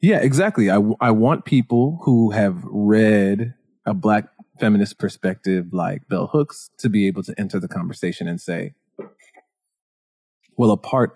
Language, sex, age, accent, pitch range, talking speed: English, male, 20-39, American, 100-130 Hz, 155 wpm